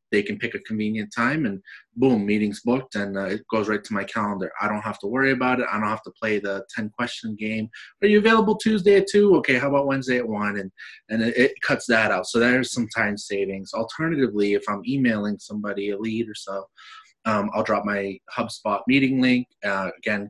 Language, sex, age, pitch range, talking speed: English, male, 20-39, 100-125 Hz, 220 wpm